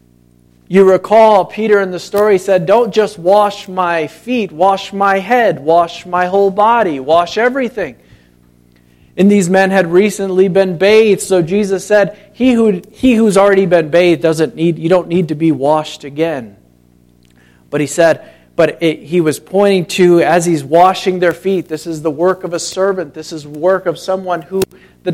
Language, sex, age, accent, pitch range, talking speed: English, male, 40-59, American, 160-195 Hz, 180 wpm